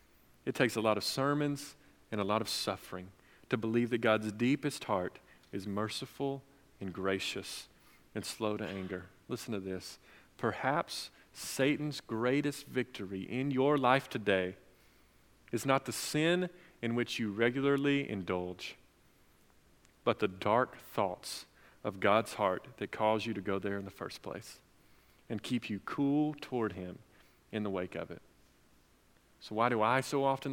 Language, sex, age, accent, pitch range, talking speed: English, male, 40-59, American, 105-150 Hz, 155 wpm